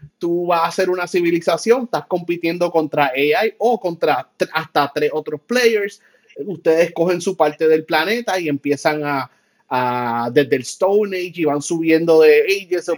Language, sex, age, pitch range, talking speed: Spanish, male, 30-49, 155-205 Hz, 165 wpm